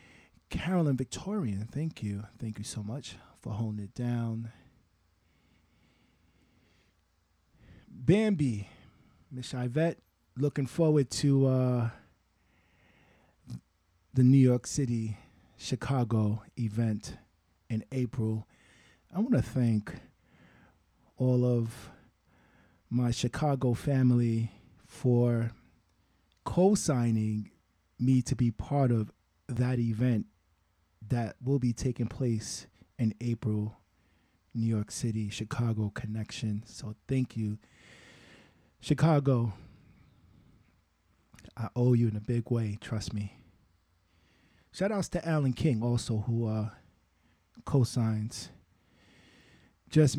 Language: English